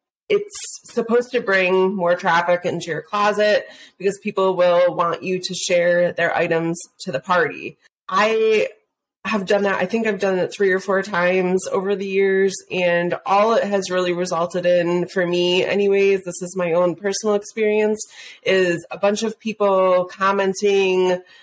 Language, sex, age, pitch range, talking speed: English, female, 30-49, 175-205 Hz, 165 wpm